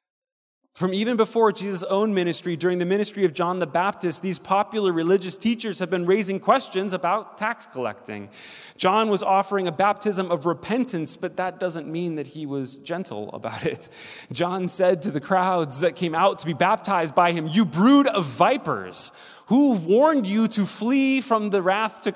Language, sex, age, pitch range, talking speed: English, male, 20-39, 130-195 Hz, 180 wpm